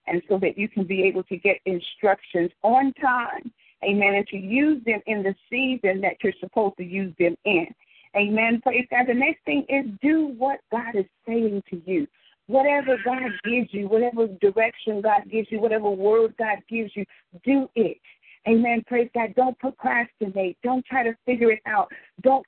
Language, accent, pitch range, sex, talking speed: English, American, 205-255 Hz, female, 185 wpm